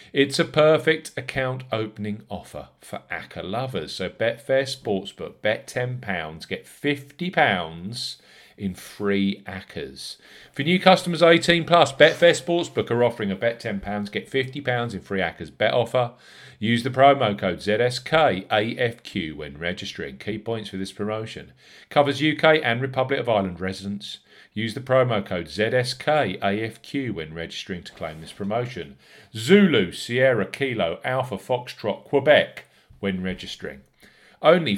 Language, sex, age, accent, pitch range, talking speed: English, male, 40-59, British, 100-140 Hz, 130 wpm